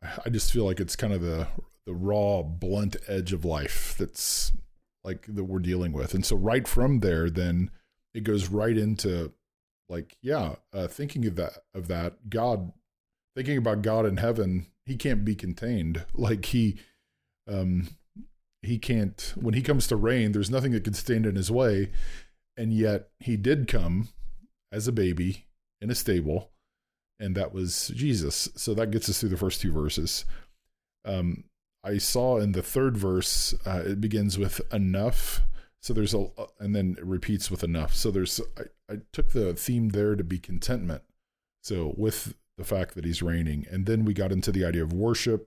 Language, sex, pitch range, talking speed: English, male, 90-115 Hz, 185 wpm